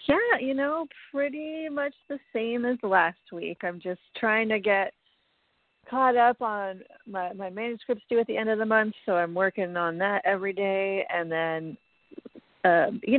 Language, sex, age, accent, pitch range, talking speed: English, female, 40-59, American, 180-225 Hz, 175 wpm